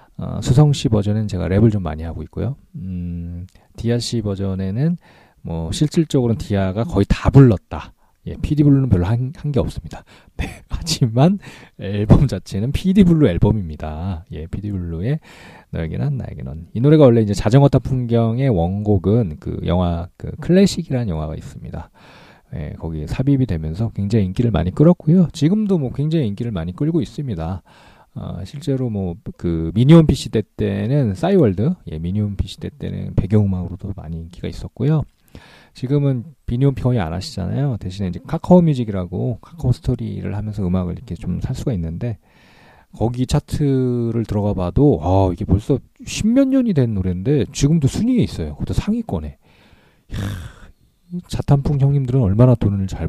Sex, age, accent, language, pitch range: male, 40-59, native, Korean, 90-140 Hz